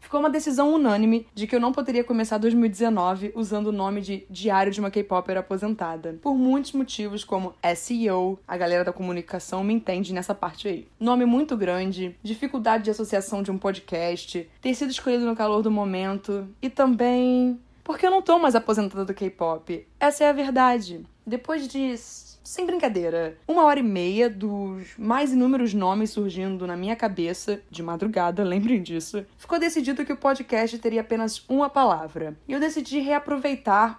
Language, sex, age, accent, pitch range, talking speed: Portuguese, female, 20-39, Brazilian, 195-260 Hz, 170 wpm